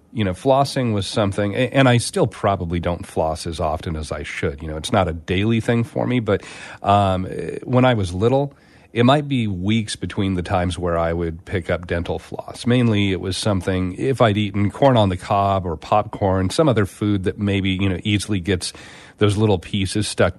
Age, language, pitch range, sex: 40-59, English, 95-120 Hz, male